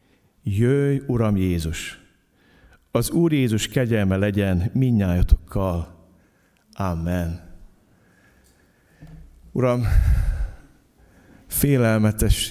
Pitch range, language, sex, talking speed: 95-115 Hz, Hungarian, male, 60 wpm